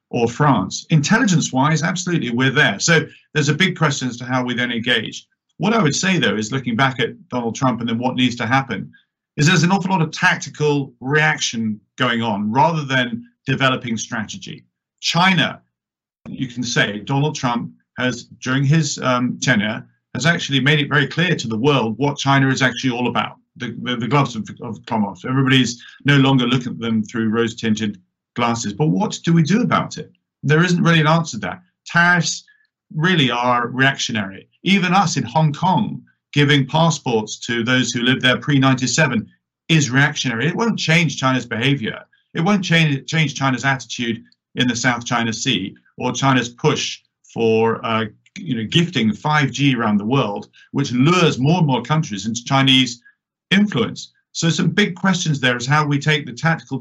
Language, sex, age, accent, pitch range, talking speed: English, male, 50-69, British, 120-160 Hz, 180 wpm